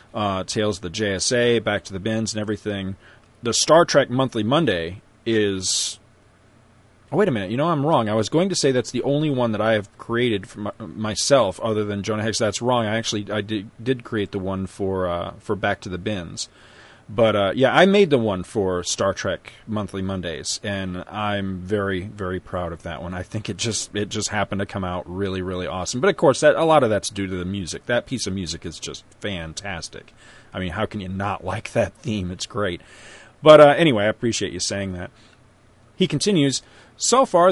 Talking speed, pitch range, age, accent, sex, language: 215 wpm, 100-140 Hz, 40-59, American, male, English